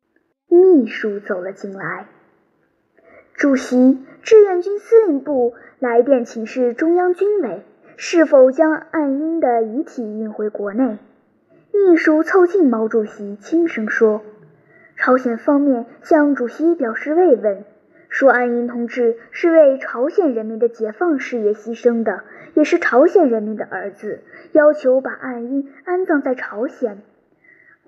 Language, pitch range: Chinese, 225-320 Hz